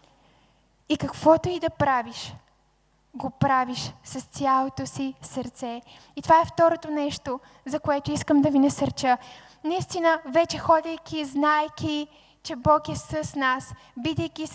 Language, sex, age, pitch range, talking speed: Bulgarian, female, 20-39, 270-310 Hz, 130 wpm